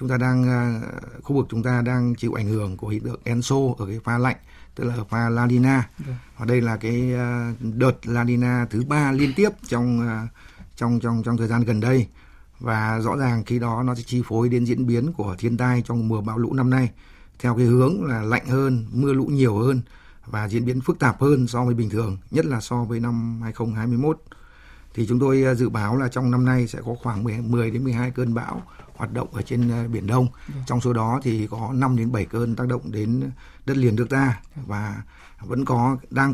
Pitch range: 115-125 Hz